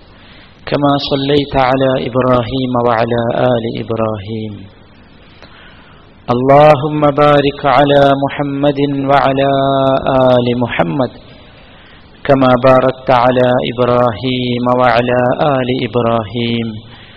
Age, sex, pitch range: 40-59, male, 115-140 Hz